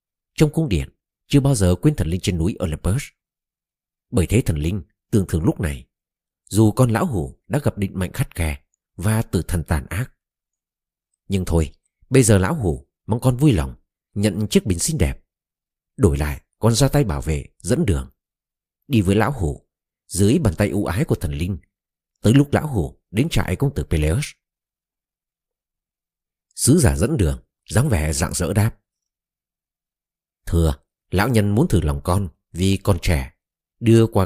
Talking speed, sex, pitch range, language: 175 wpm, male, 80-110 Hz, Vietnamese